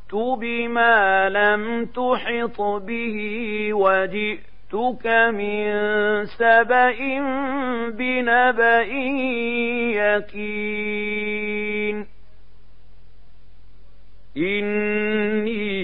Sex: male